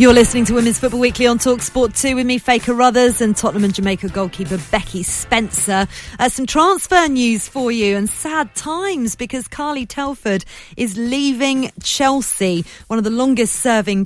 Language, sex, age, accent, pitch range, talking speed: English, female, 40-59, British, 185-240 Hz, 170 wpm